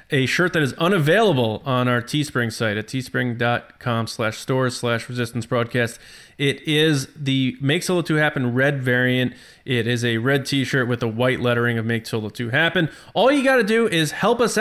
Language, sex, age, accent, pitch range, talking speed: English, male, 20-39, American, 120-150 Hz, 195 wpm